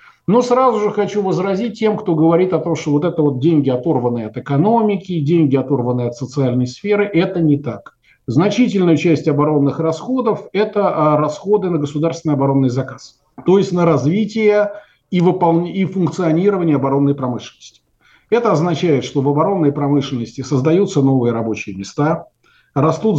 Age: 40-59